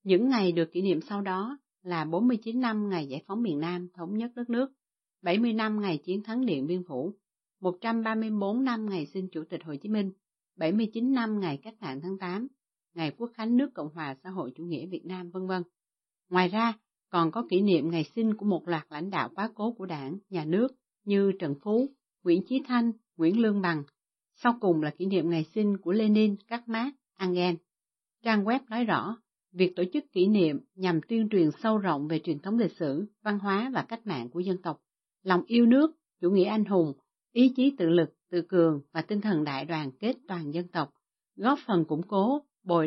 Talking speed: 210 wpm